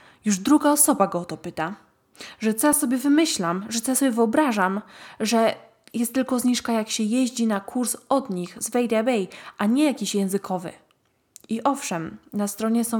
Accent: native